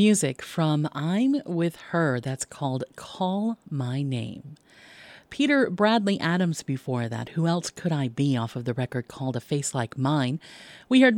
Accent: American